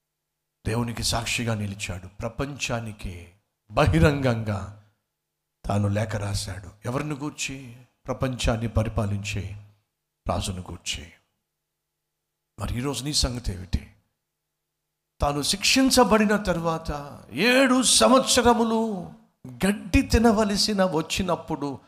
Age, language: 60-79, Telugu